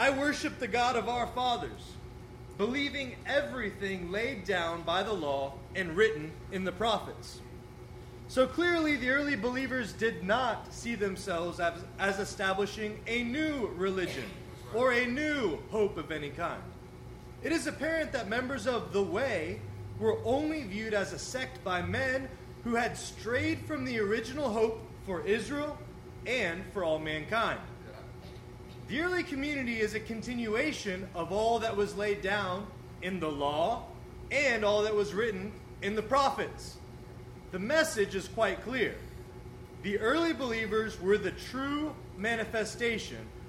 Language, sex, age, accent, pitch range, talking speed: English, male, 30-49, American, 190-255 Hz, 145 wpm